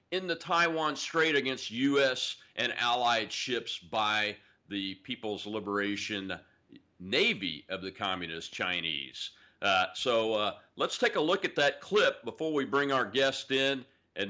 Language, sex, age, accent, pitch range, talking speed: English, male, 40-59, American, 100-140 Hz, 145 wpm